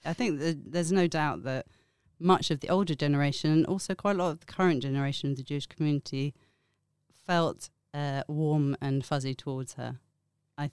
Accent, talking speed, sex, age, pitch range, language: British, 175 wpm, female, 40-59, 135-155 Hz, English